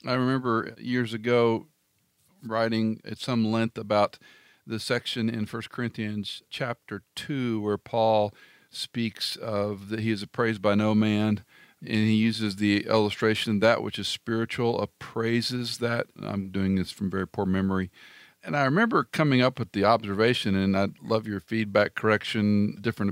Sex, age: male, 50-69